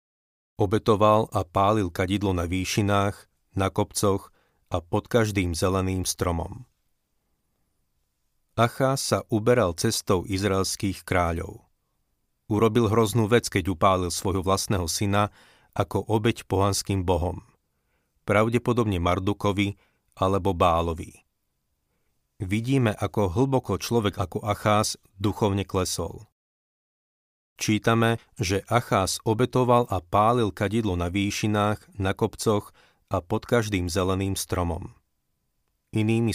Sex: male